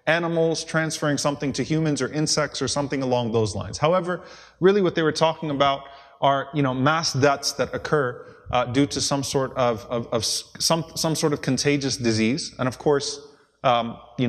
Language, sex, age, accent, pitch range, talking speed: English, male, 20-39, American, 120-160 Hz, 190 wpm